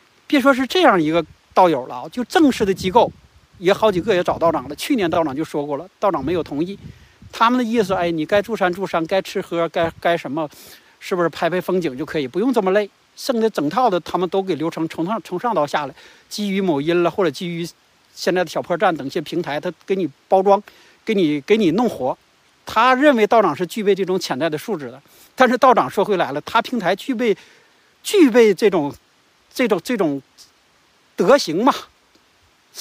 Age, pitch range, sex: 60-79, 170-235 Hz, male